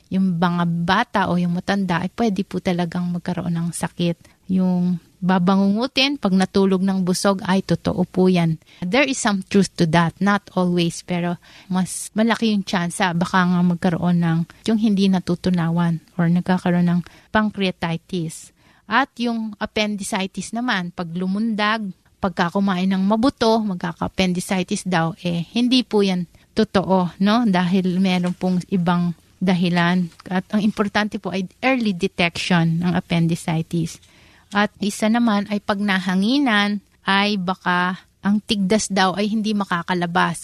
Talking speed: 135 wpm